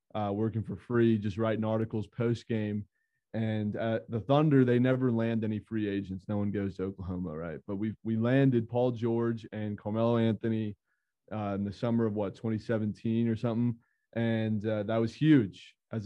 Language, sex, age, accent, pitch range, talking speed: English, male, 20-39, American, 105-115 Hz, 180 wpm